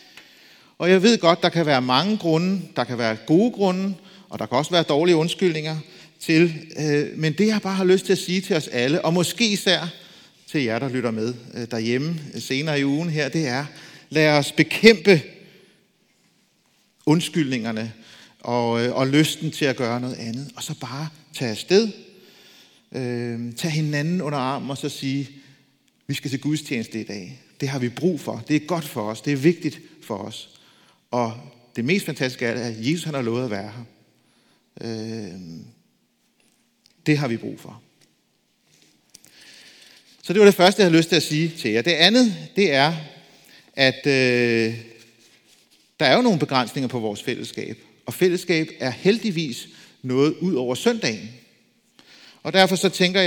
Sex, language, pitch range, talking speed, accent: male, Danish, 125-180 Hz, 170 wpm, native